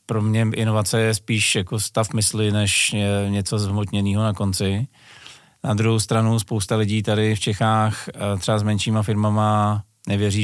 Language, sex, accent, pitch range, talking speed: Czech, male, native, 100-110 Hz, 150 wpm